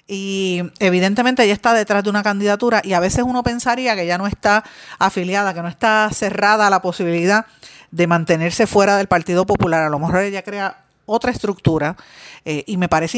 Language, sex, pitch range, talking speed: Spanish, female, 175-215 Hz, 190 wpm